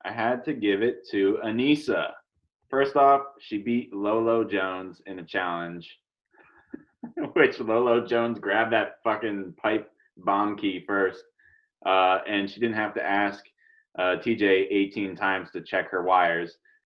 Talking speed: 145 wpm